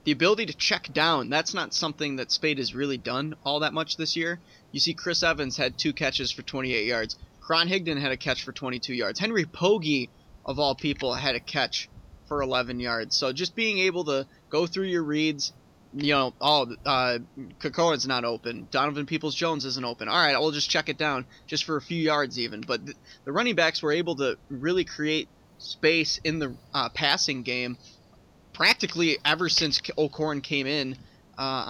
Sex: male